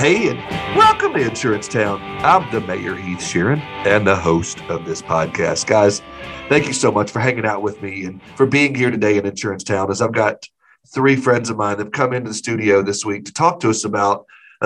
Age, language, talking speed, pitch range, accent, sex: 40-59, English, 230 wpm, 105-135 Hz, American, male